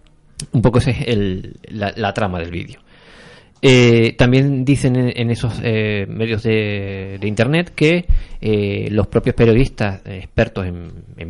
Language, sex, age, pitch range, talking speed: Spanish, male, 20-39, 95-120 Hz, 160 wpm